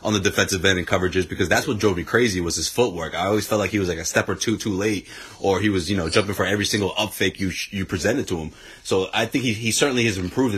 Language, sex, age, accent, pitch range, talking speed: English, male, 30-49, American, 100-120 Hz, 295 wpm